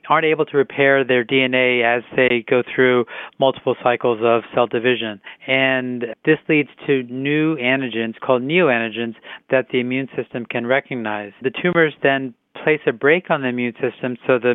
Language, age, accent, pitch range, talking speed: English, 40-59, American, 125-145 Hz, 170 wpm